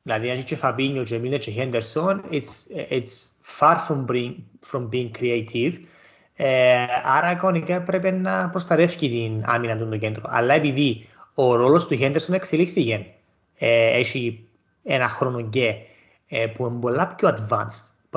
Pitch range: 115-165 Hz